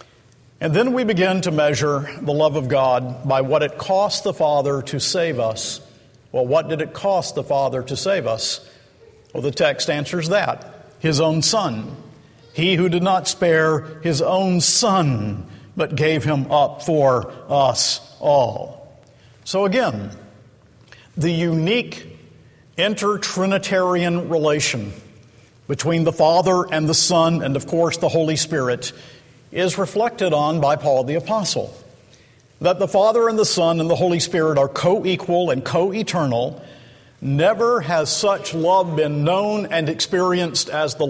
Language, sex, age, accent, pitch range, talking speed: English, male, 50-69, American, 130-180 Hz, 145 wpm